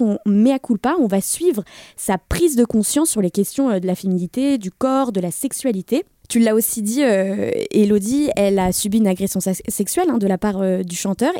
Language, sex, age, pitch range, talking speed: French, female, 20-39, 200-265 Hz, 215 wpm